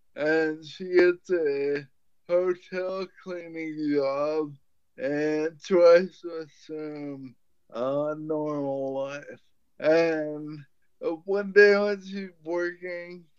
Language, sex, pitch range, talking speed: English, male, 155-190 Hz, 95 wpm